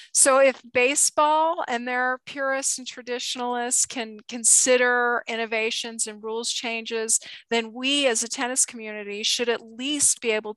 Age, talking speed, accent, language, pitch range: 40-59, 140 wpm, American, English, 215-250 Hz